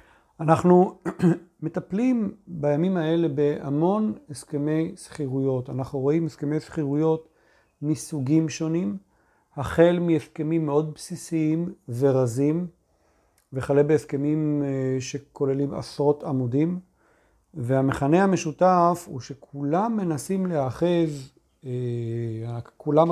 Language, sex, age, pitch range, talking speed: Hebrew, male, 40-59, 135-170 Hz, 80 wpm